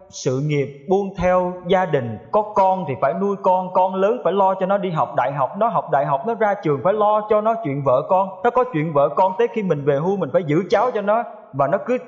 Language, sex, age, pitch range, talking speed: Vietnamese, male, 20-39, 155-210 Hz, 275 wpm